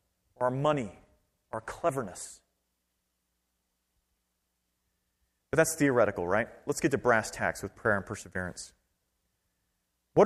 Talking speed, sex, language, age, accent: 105 wpm, male, English, 30-49, American